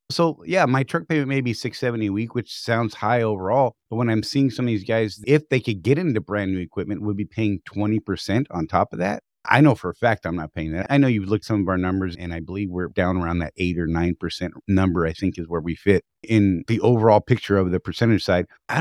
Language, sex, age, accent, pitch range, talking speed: English, male, 30-49, American, 95-120 Hz, 270 wpm